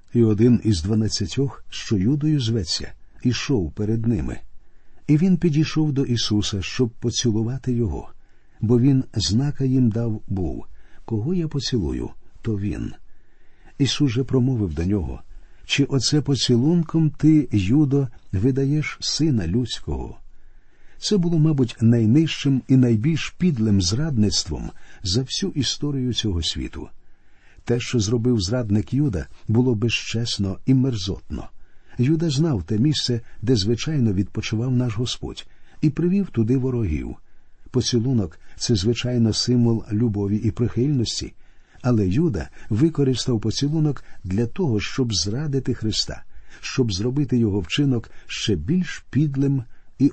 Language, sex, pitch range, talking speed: Ukrainian, male, 105-135 Hz, 120 wpm